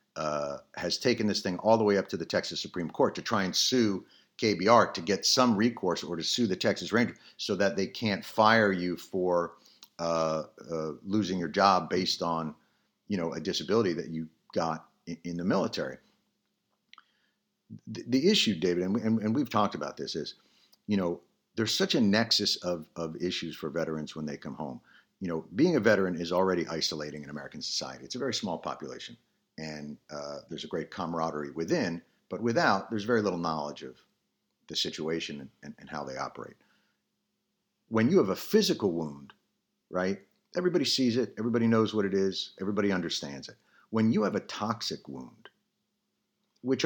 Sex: male